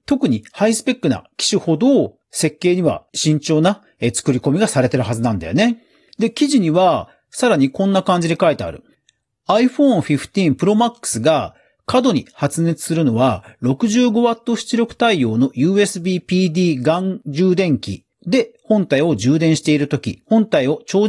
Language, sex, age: Japanese, male, 40-59